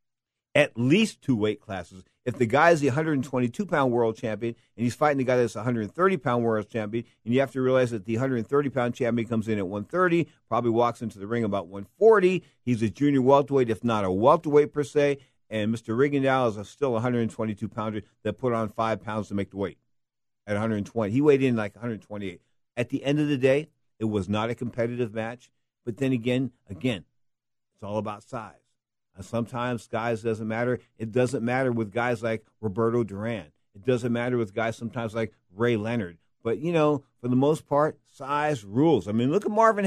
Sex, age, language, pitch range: male, 50-69, English, 115-145 Hz